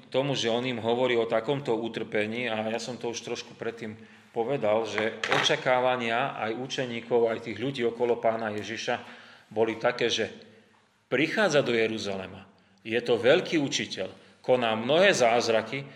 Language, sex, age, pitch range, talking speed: Slovak, male, 30-49, 110-135 Hz, 145 wpm